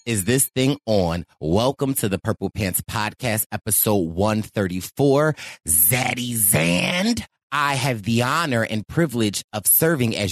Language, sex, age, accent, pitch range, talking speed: English, male, 30-49, American, 110-160 Hz, 135 wpm